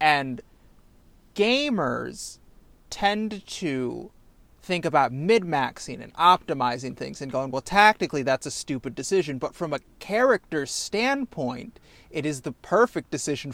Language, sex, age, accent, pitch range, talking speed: English, male, 30-49, American, 140-180 Hz, 125 wpm